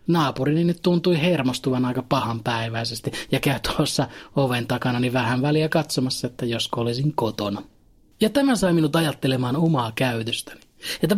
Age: 30-49